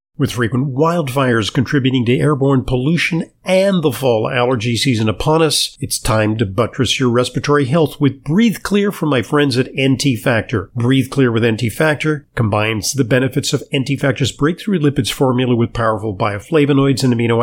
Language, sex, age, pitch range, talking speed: English, male, 50-69, 120-150 Hz, 170 wpm